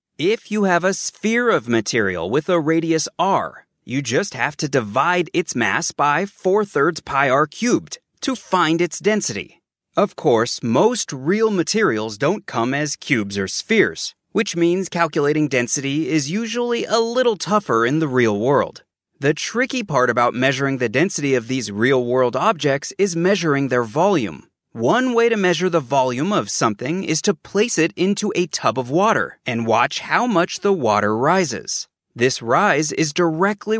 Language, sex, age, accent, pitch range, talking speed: English, male, 30-49, American, 140-200 Hz, 165 wpm